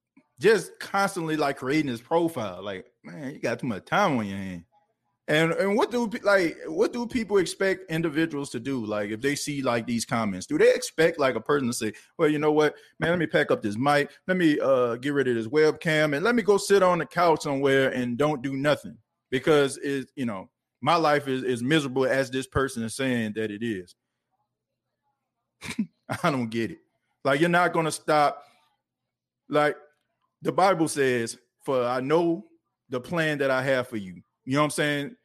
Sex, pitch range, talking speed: male, 130-165 Hz, 205 wpm